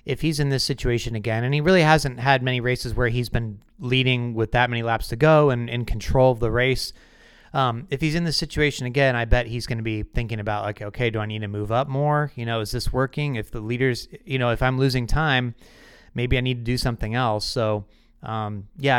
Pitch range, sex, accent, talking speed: 115-145 Hz, male, American, 245 wpm